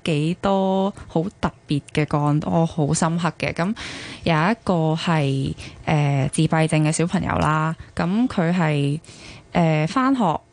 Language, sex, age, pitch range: Chinese, female, 20-39, 150-190 Hz